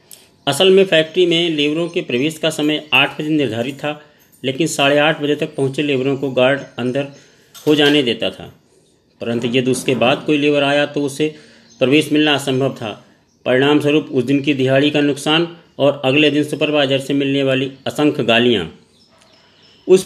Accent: native